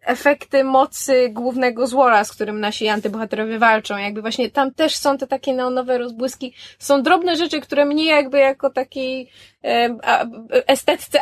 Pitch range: 235-285 Hz